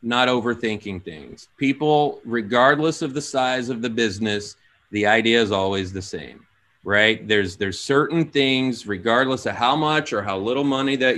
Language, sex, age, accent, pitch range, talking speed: English, male, 30-49, American, 105-135 Hz, 165 wpm